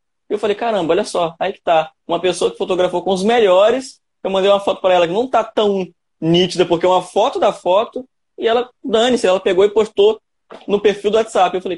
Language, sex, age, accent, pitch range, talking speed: Portuguese, male, 20-39, Brazilian, 170-235 Hz, 235 wpm